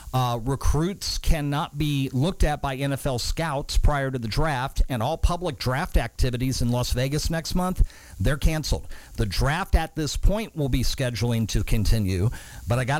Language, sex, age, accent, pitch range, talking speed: English, male, 50-69, American, 115-135 Hz, 175 wpm